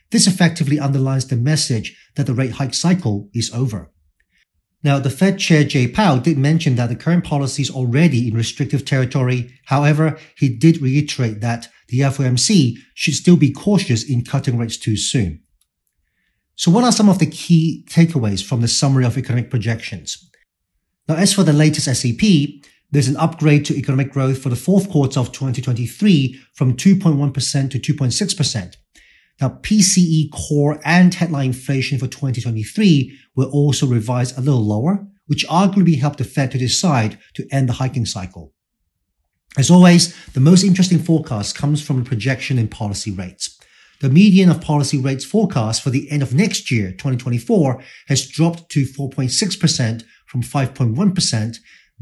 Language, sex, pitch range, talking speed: English, male, 125-160 Hz, 160 wpm